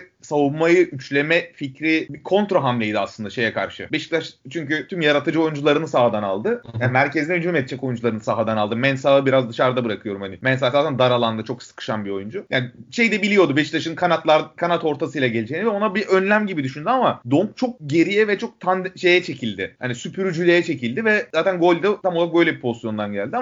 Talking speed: 185 wpm